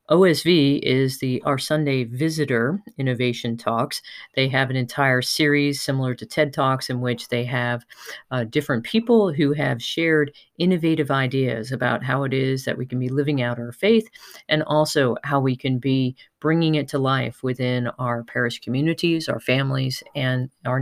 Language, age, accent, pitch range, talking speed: English, 40-59, American, 125-155 Hz, 170 wpm